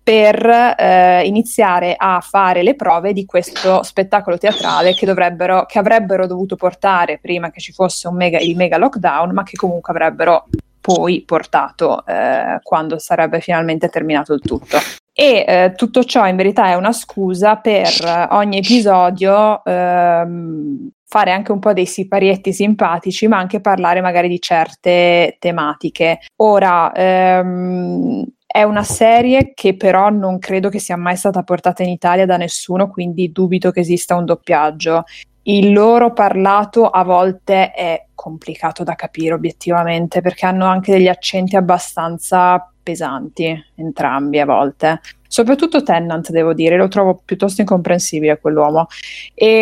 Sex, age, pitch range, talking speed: female, 20-39, 175-200 Hz, 145 wpm